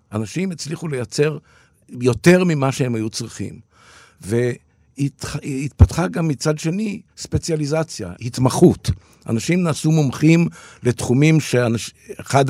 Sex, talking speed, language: male, 90 wpm, Hebrew